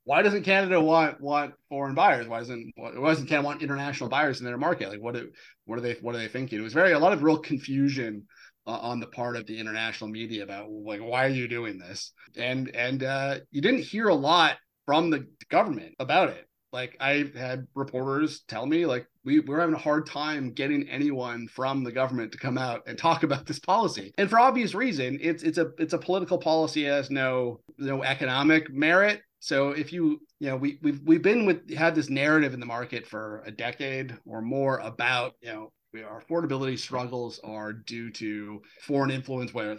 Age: 30-49